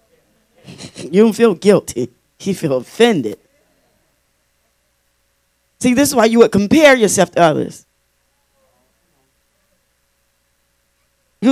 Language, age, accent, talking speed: English, 40-59, American, 95 wpm